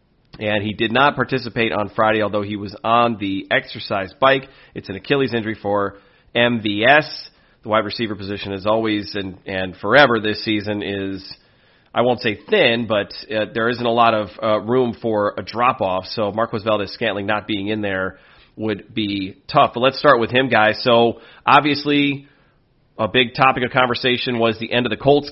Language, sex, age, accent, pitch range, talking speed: English, male, 30-49, American, 110-130 Hz, 185 wpm